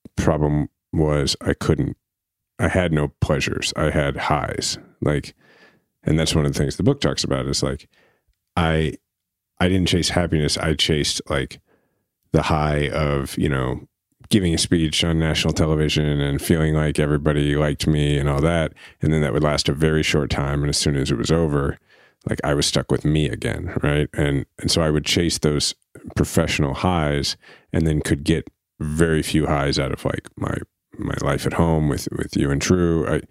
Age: 30-49